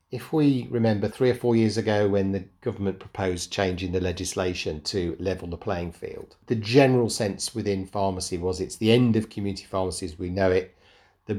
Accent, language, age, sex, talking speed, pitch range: British, English, 40-59, male, 190 wpm, 95-110 Hz